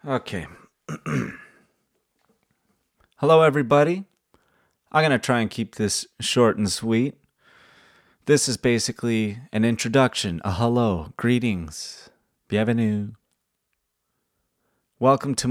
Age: 30-49